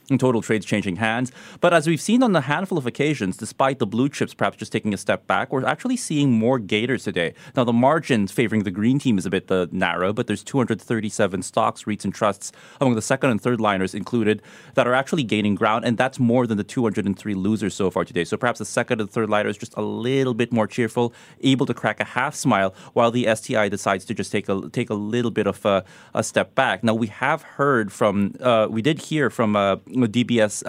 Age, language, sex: 30-49, English, male